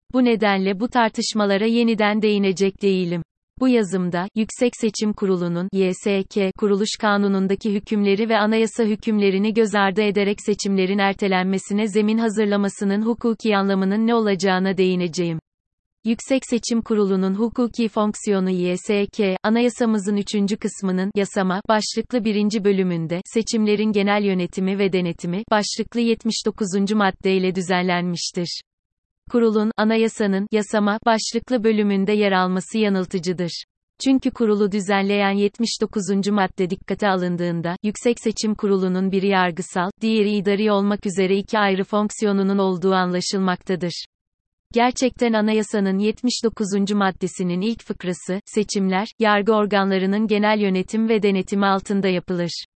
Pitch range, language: 190-220 Hz, Turkish